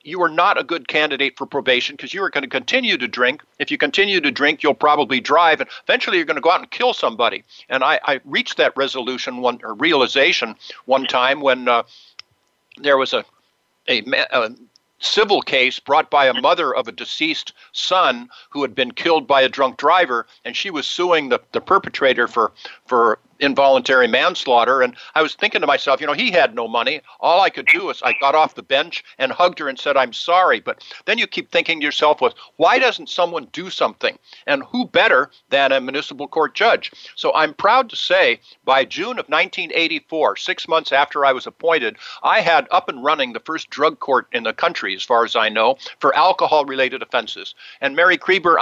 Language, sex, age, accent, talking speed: English, male, 60-79, American, 210 wpm